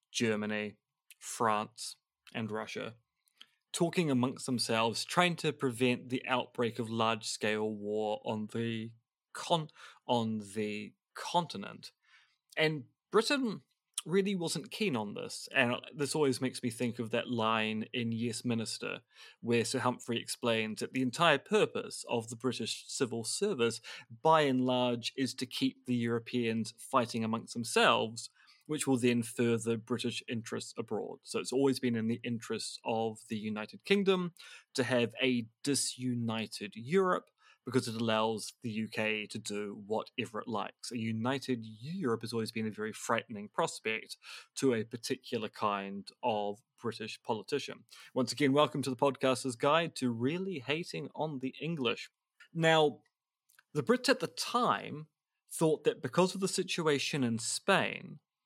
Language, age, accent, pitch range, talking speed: English, 20-39, British, 115-145 Hz, 145 wpm